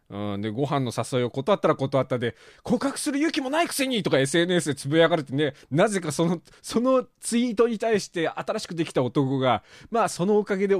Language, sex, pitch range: Japanese, male, 150-230 Hz